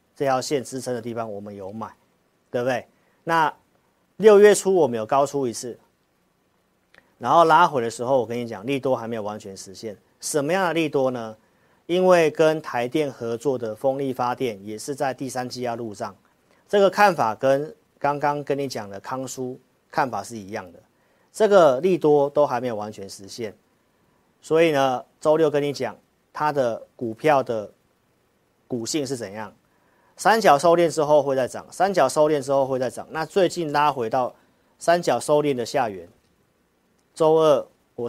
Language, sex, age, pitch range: Chinese, male, 40-59, 115-150 Hz